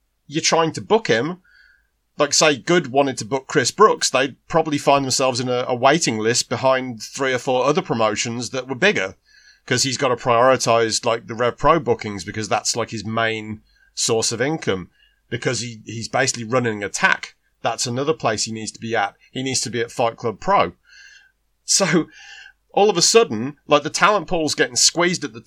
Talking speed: 200 wpm